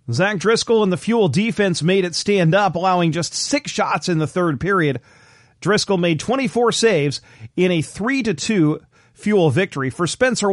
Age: 40-59